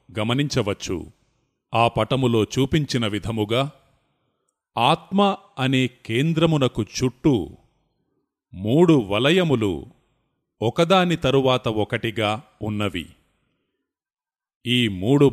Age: 30-49